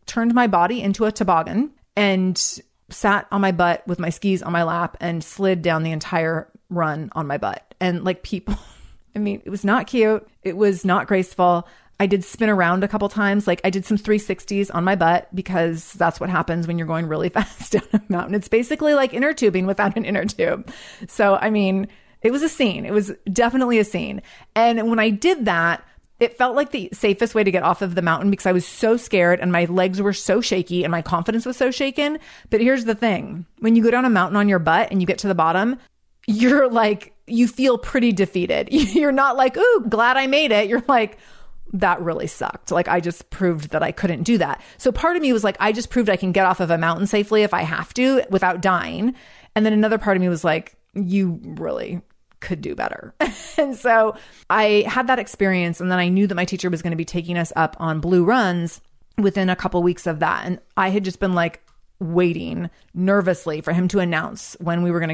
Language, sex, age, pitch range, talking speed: English, female, 30-49, 175-225 Hz, 230 wpm